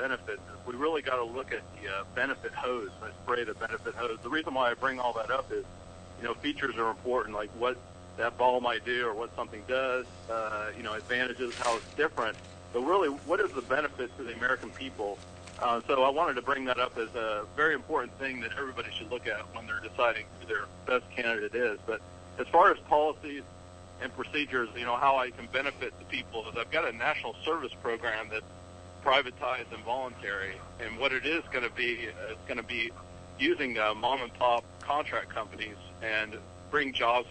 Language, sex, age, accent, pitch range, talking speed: English, male, 50-69, American, 100-130 Hz, 210 wpm